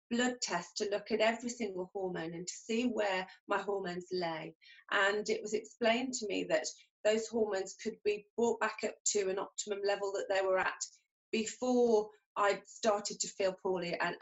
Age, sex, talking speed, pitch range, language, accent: 30-49, female, 185 wpm, 185-220 Hz, English, British